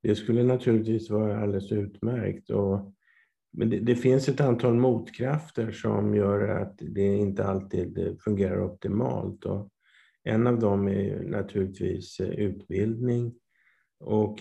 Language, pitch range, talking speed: Swedish, 100-115 Hz, 125 wpm